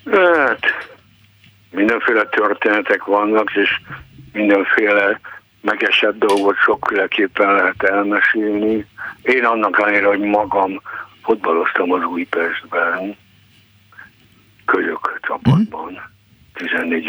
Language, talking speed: Hungarian, 80 wpm